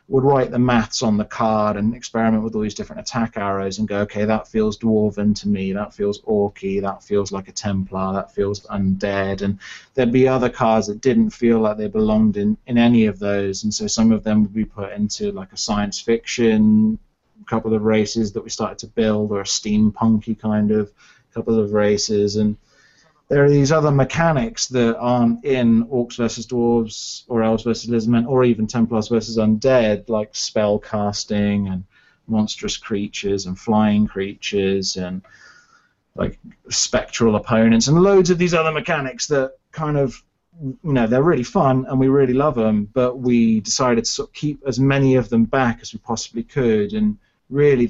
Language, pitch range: English, 105-130 Hz